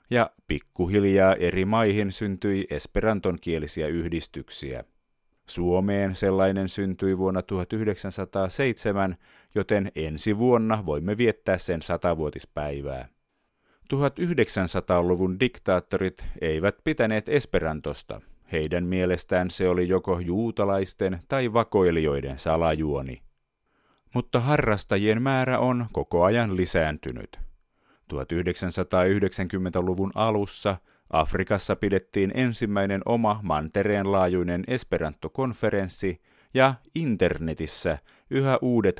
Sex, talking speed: male, 80 wpm